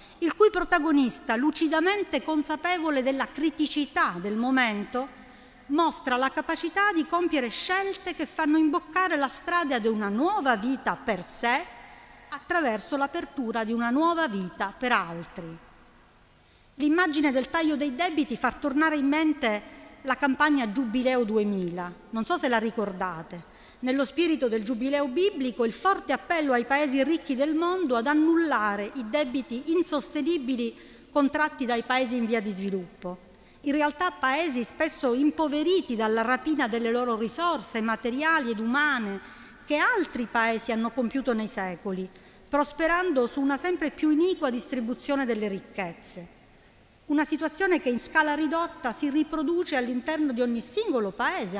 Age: 40-59